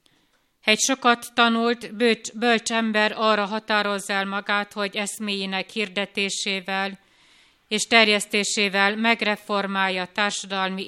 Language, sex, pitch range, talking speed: Hungarian, female, 200-230 Hz, 95 wpm